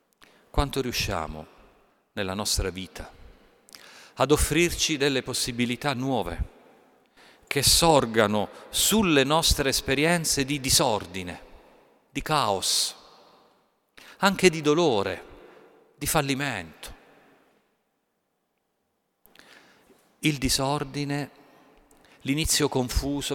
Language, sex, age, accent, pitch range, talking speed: Italian, male, 50-69, native, 100-145 Hz, 70 wpm